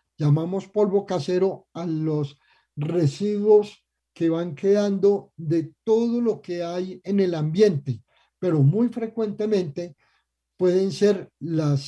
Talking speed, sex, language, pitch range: 115 wpm, male, Spanish, 160-200 Hz